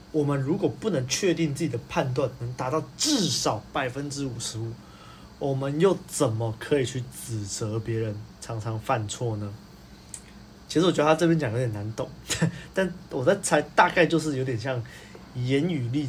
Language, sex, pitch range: Chinese, male, 120-165 Hz